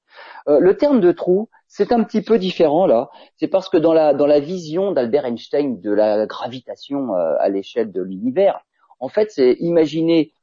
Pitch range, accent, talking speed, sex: 145-215 Hz, French, 190 wpm, male